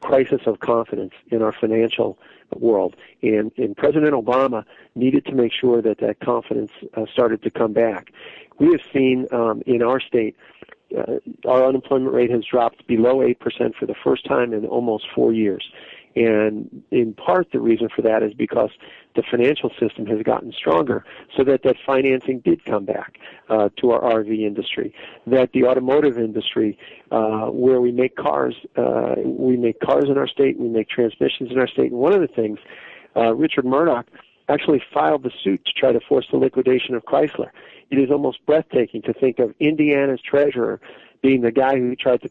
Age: 40-59